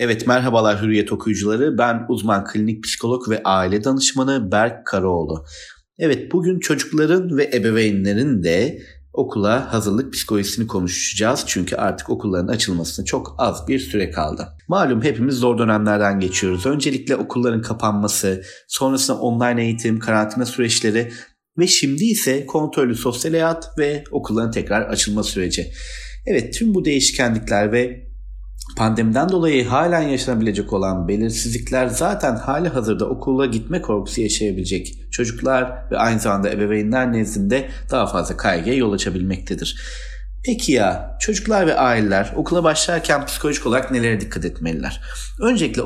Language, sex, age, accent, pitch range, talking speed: Turkish, male, 30-49, native, 105-135 Hz, 130 wpm